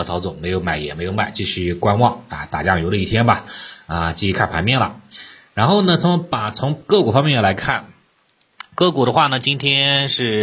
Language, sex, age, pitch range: Chinese, male, 30-49, 95-120 Hz